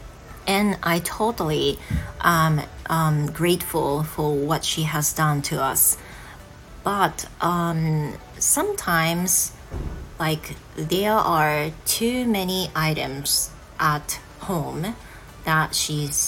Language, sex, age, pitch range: Japanese, female, 30-49, 145-180 Hz